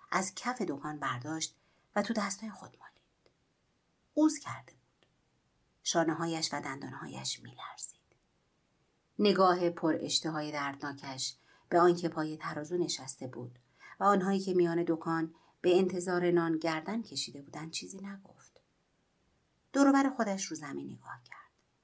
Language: Persian